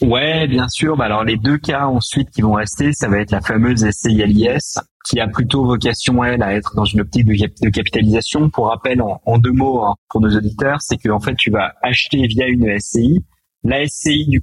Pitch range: 110-145 Hz